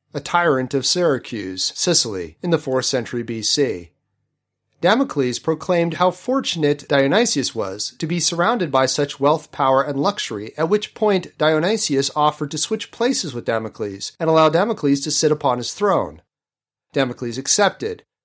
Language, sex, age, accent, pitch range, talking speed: English, male, 40-59, American, 125-170 Hz, 150 wpm